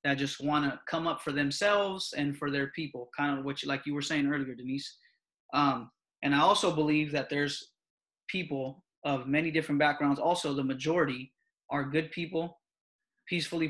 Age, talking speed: 20-39, 180 wpm